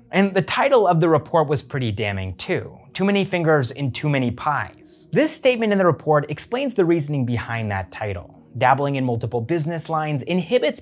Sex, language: male, English